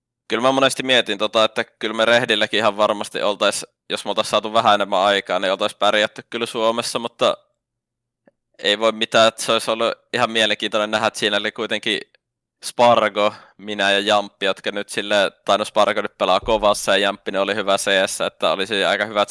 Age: 20-39